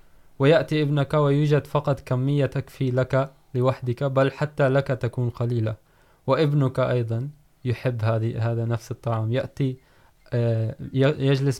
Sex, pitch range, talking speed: male, 120-140 Hz, 110 wpm